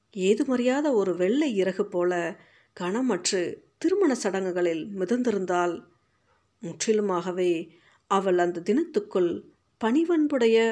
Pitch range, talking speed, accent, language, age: 180-215 Hz, 85 wpm, native, Tamil, 50-69